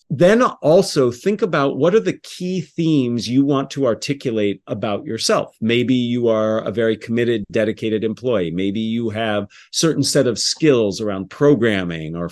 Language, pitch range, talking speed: English, 110-140 Hz, 165 wpm